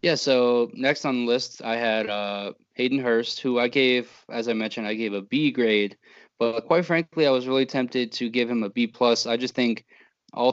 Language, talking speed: English, 220 wpm